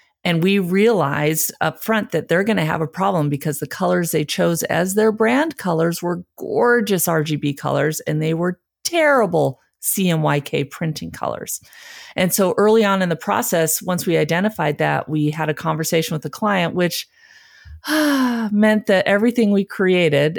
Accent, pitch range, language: American, 150-195 Hz, Dutch